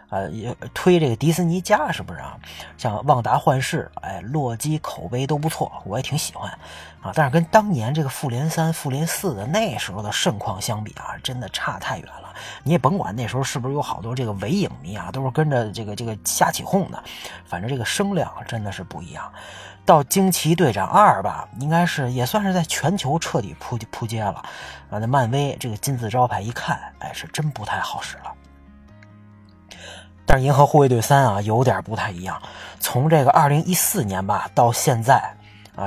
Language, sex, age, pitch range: Chinese, male, 30-49, 110-160 Hz